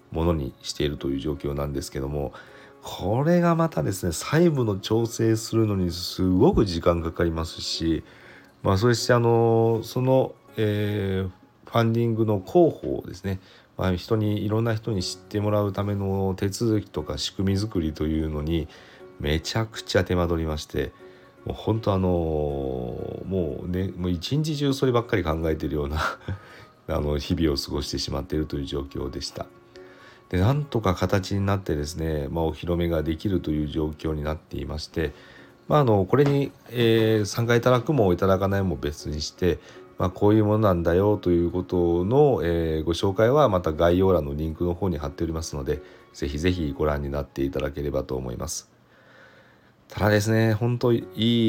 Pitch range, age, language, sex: 80-110 Hz, 40-59, Japanese, male